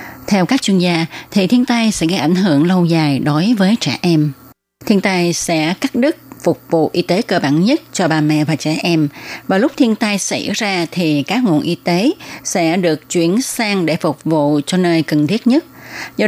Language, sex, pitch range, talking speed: Vietnamese, female, 155-210 Hz, 220 wpm